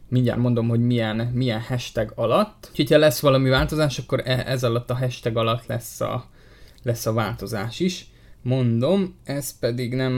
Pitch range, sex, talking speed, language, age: 120-140 Hz, male, 160 wpm, Hungarian, 20-39